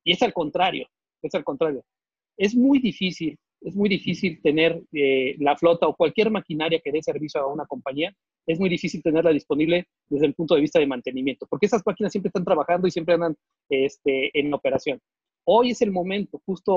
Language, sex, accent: Spanish, male, Mexican